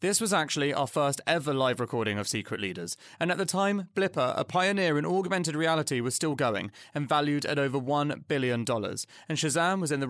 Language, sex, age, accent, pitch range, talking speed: English, male, 30-49, British, 120-160 Hz, 210 wpm